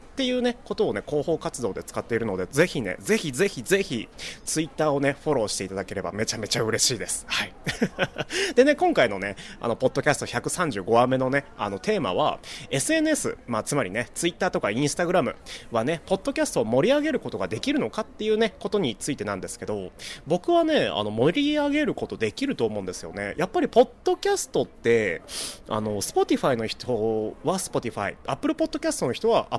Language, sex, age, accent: Japanese, male, 30-49, native